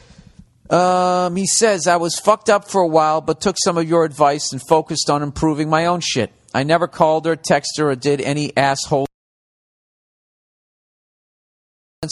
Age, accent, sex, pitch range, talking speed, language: 50-69, American, male, 115-160 Hz, 165 wpm, English